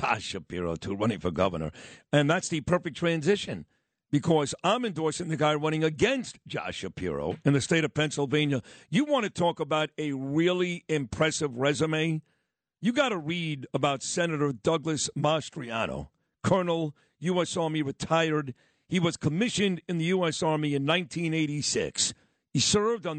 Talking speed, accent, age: 155 wpm, American, 50-69